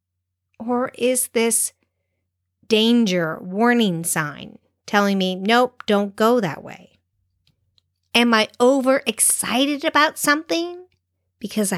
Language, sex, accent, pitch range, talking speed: English, female, American, 160-245 Hz, 95 wpm